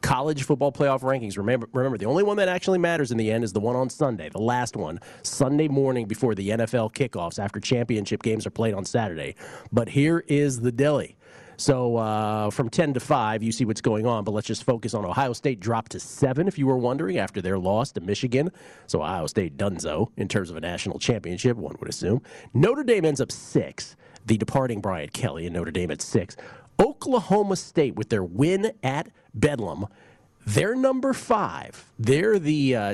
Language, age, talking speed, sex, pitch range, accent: English, 40-59, 200 wpm, male, 110-145 Hz, American